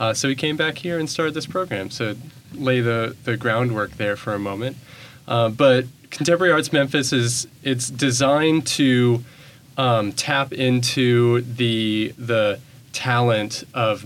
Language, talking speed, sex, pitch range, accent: English, 150 wpm, male, 115-135 Hz, American